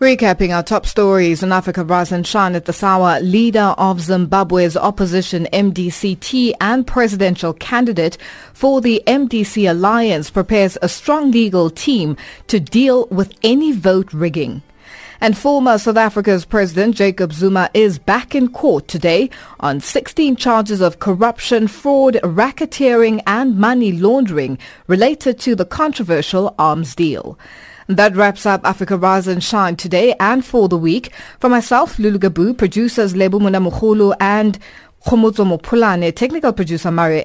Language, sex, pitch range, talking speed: English, female, 180-235 Hz, 135 wpm